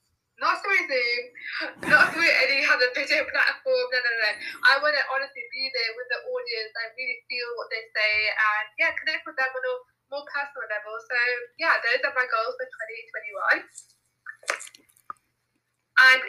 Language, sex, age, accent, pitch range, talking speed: English, female, 20-39, British, 240-315 Hz, 170 wpm